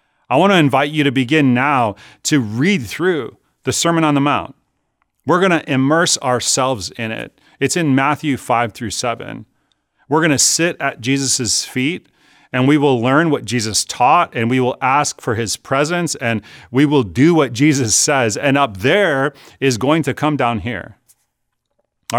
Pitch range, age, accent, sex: 120-145 Hz, 40-59, American, male